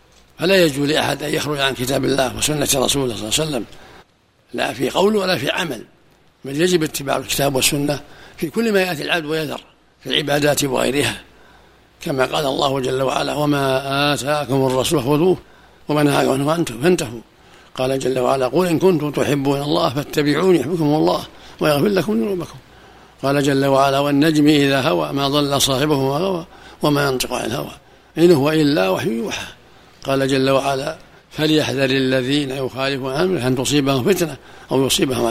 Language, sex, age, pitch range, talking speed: Arabic, male, 60-79, 135-165 Hz, 150 wpm